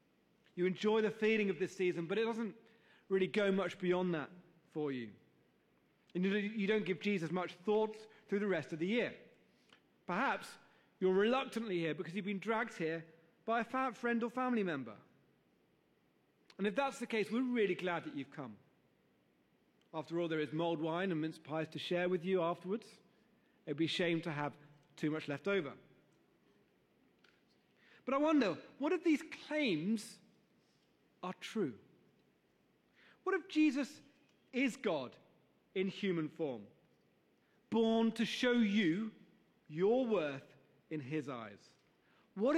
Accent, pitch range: British, 160-220 Hz